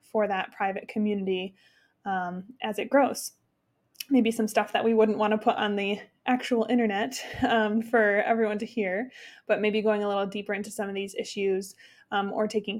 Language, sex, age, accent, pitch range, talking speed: English, female, 20-39, American, 220-265 Hz, 190 wpm